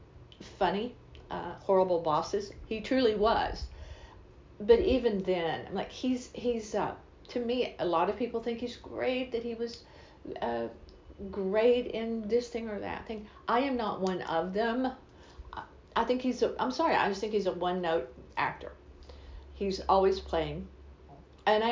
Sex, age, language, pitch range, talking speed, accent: female, 50-69, English, 165-225 Hz, 160 wpm, American